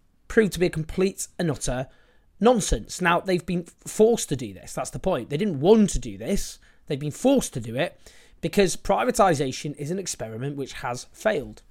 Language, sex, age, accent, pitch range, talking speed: English, male, 30-49, British, 140-200 Hz, 195 wpm